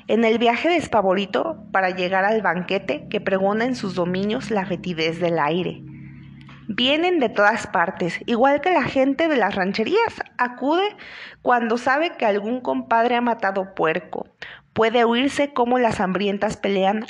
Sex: female